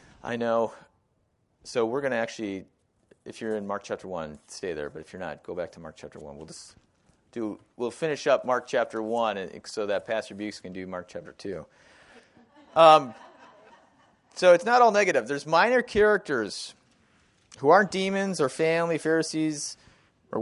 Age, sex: 30-49, male